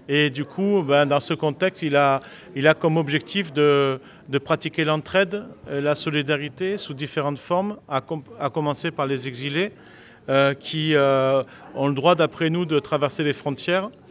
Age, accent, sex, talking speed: 40-59, French, male, 175 wpm